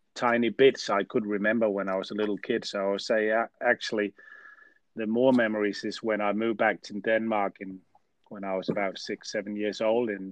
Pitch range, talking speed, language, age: 95-115 Hz, 210 wpm, English, 30-49